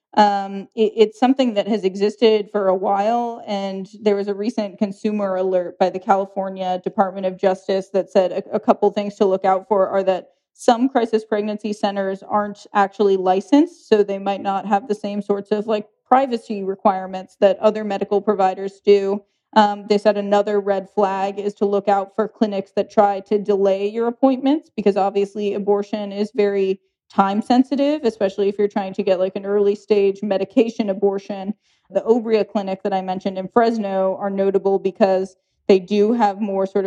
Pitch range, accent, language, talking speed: 190-215 Hz, American, English, 180 wpm